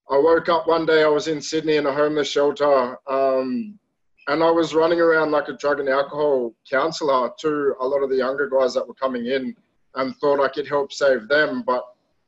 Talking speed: 215 wpm